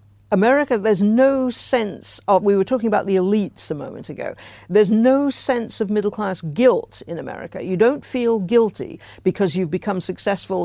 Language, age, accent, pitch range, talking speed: English, 60-79, British, 175-205 Hz, 175 wpm